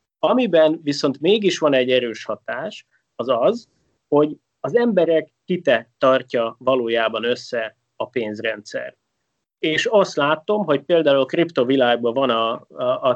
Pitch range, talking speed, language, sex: 115-170 Hz, 135 wpm, Hungarian, male